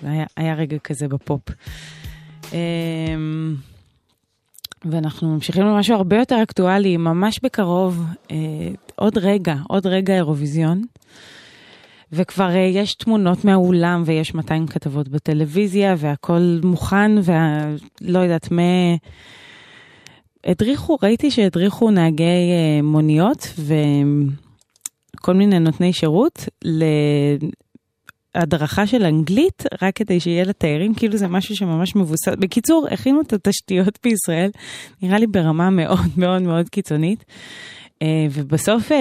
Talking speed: 105 wpm